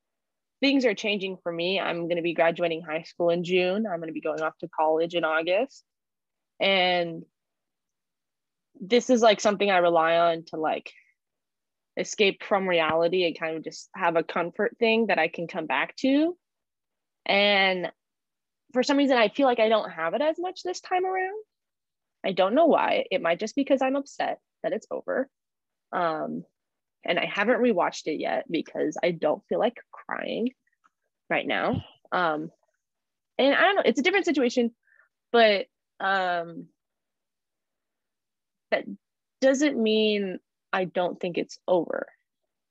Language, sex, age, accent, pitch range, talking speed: English, female, 20-39, American, 170-245 Hz, 155 wpm